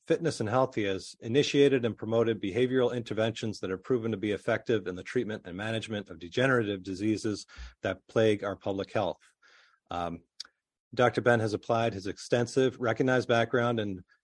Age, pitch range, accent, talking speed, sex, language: 40-59, 100-120 Hz, American, 165 wpm, male, English